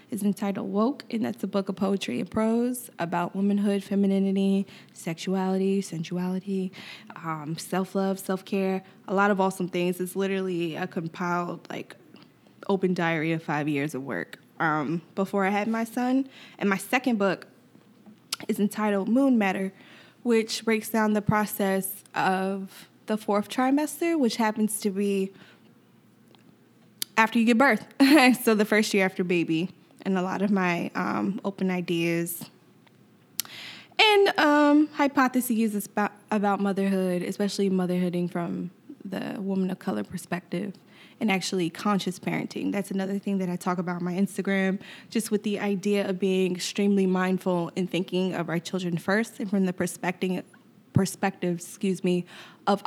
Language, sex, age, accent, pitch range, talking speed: English, female, 20-39, American, 180-215 Hz, 150 wpm